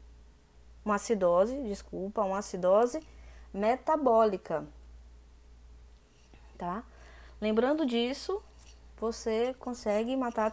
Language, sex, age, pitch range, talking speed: Portuguese, female, 10-29, 170-250 Hz, 65 wpm